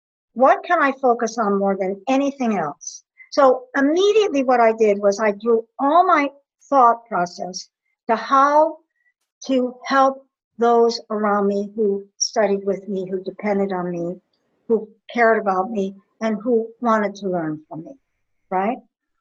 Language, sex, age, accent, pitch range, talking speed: English, male, 60-79, American, 195-255 Hz, 150 wpm